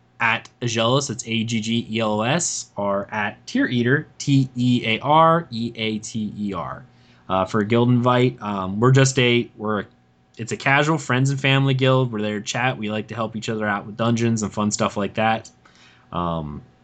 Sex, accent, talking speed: male, American, 205 wpm